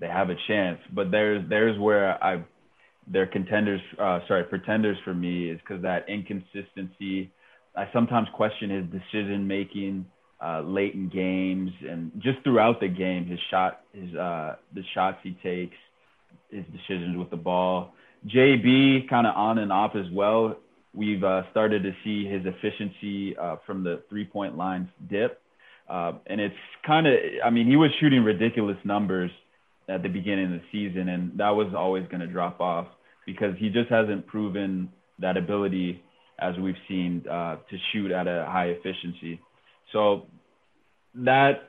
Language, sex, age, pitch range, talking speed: English, male, 20-39, 90-105 Hz, 165 wpm